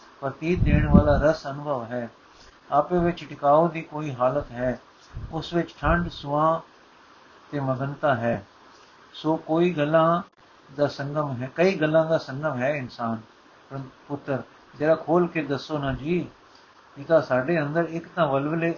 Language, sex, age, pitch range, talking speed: Punjabi, male, 60-79, 135-165 Hz, 145 wpm